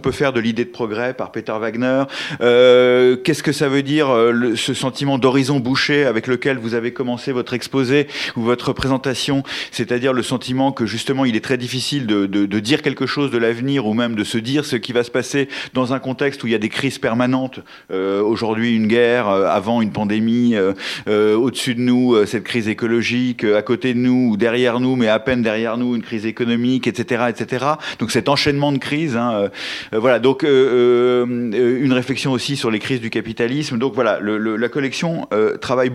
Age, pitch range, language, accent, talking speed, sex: 30-49, 115-140 Hz, French, French, 220 wpm, male